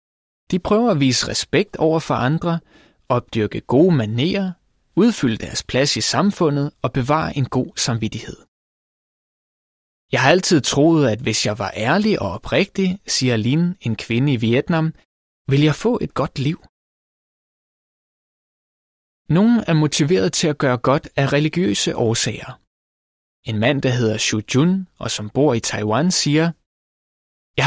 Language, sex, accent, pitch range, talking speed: Danish, male, native, 115-165 Hz, 145 wpm